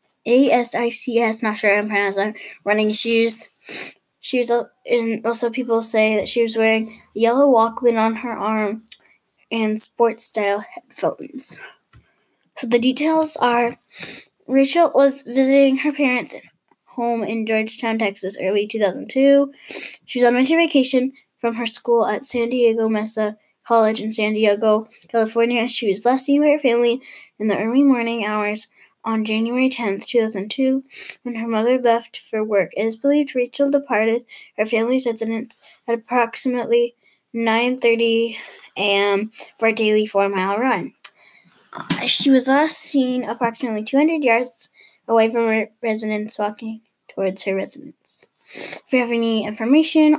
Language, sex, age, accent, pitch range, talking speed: English, female, 10-29, American, 215-255 Hz, 140 wpm